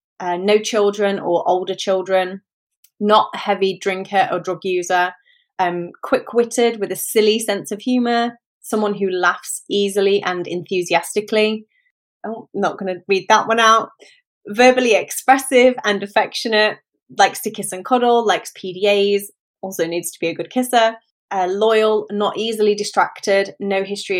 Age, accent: 20-39, British